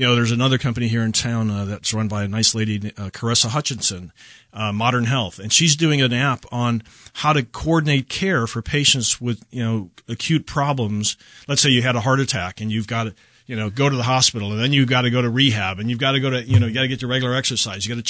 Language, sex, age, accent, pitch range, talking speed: English, male, 40-59, American, 110-135 Hz, 270 wpm